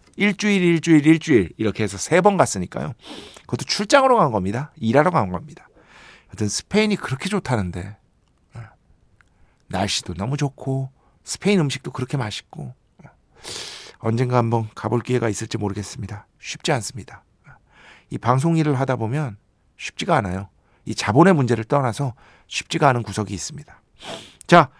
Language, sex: Korean, male